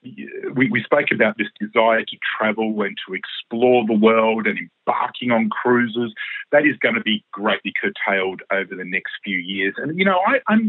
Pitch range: 105-170 Hz